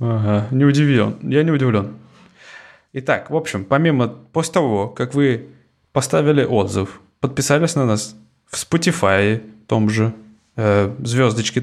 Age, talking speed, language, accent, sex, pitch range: 20-39, 130 wpm, Russian, native, male, 100-130 Hz